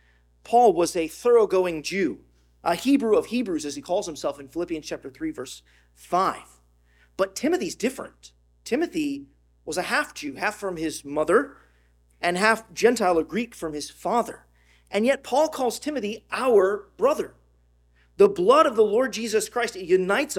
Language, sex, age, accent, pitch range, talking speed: English, male, 40-59, American, 135-225 Hz, 160 wpm